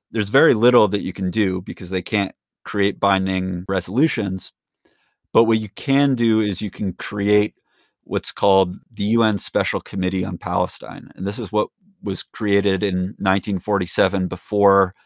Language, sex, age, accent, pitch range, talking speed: English, male, 30-49, American, 95-110 Hz, 155 wpm